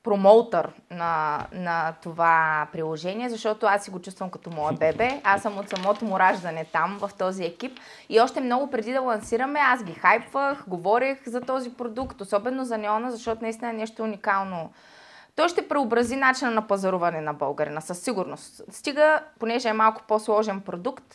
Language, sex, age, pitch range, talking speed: Bulgarian, female, 20-39, 180-245 Hz, 170 wpm